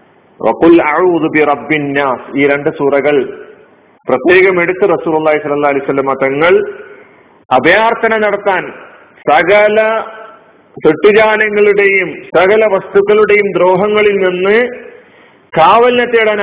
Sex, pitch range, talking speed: male, 170-220 Hz, 70 wpm